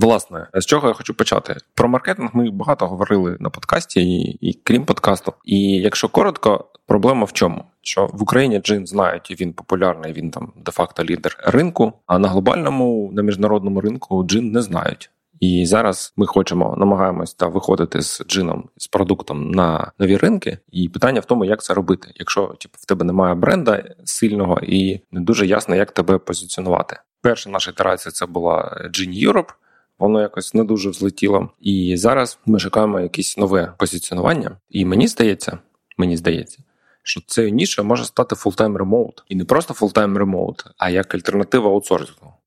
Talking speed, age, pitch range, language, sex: 165 wpm, 20-39, 90-110 Hz, Ukrainian, male